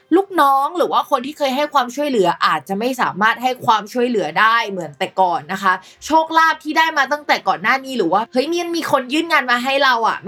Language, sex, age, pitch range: Thai, female, 20-39, 195-265 Hz